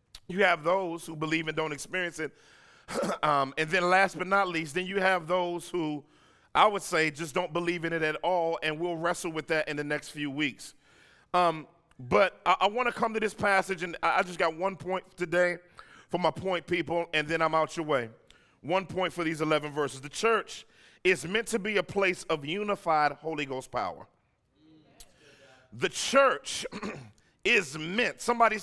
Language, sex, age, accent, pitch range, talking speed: English, male, 40-59, American, 155-200 Hz, 190 wpm